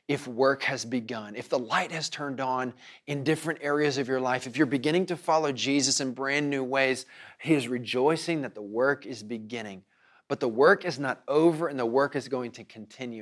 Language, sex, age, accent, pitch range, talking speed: English, male, 30-49, American, 110-145 Hz, 215 wpm